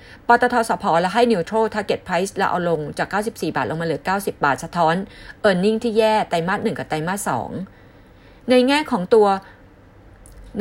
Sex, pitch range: female, 165-215 Hz